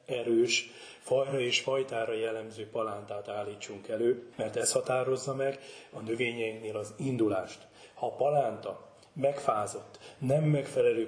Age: 30-49